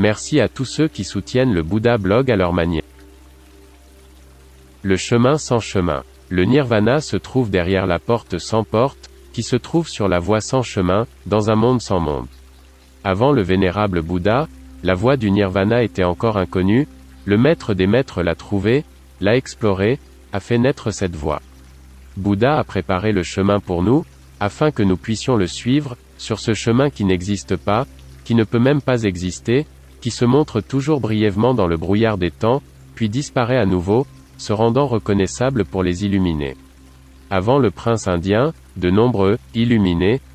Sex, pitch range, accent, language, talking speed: male, 85-120 Hz, French, French, 170 wpm